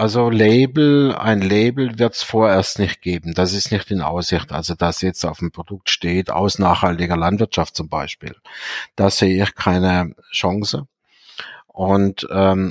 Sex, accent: male, German